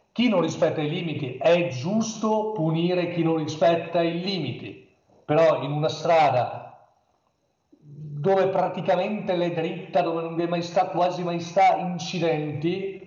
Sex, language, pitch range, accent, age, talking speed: male, Italian, 145-180 Hz, native, 40-59, 140 wpm